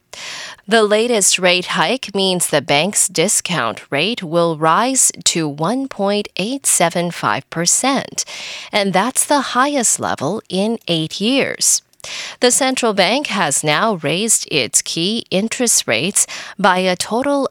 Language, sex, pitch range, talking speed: English, female, 165-245 Hz, 115 wpm